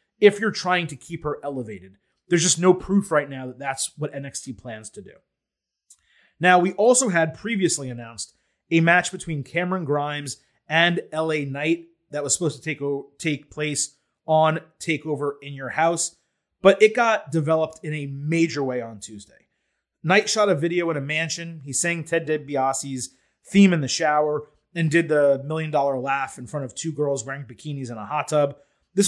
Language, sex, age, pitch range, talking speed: English, male, 30-49, 140-175 Hz, 185 wpm